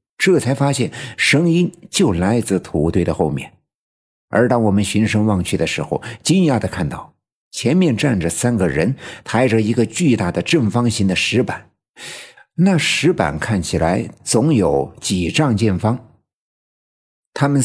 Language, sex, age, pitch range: Chinese, male, 50-69, 90-125 Hz